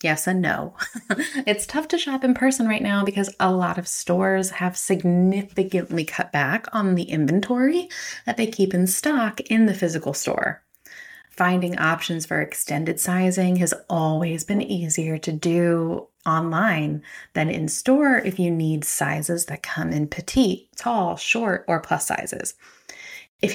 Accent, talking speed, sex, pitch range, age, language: American, 155 wpm, female, 175-245 Hz, 30-49, English